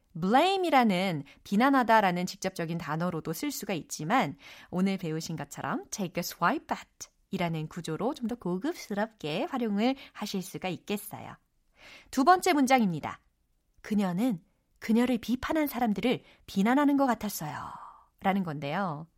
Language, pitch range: Korean, 185-300 Hz